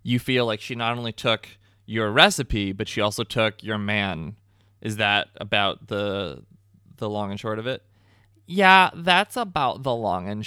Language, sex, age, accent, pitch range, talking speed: English, male, 20-39, American, 100-135 Hz, 180 wpm